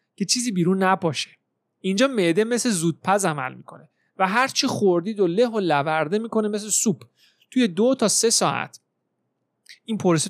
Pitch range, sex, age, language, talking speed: 170-230 Hz, male, 30-49, Persian, 155 wpm